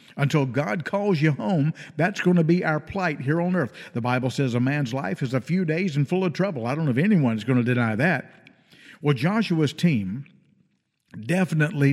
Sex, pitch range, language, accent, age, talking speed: male, 130-175 Hz, English, American, 50-69, 205 wpm